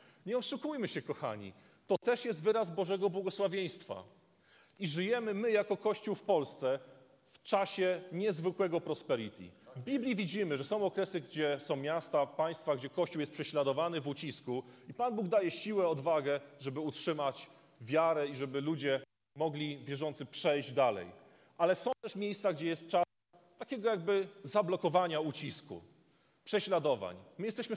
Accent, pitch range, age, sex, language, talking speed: native, 135-195 Hz, 30-49, male, Polish, 145 wpm